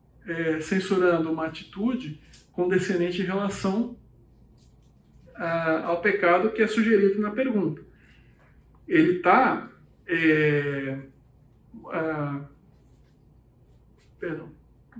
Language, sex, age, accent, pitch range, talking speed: Portuguese, male, 50-69, Brazilian, 160-225 Hz, 80 wpm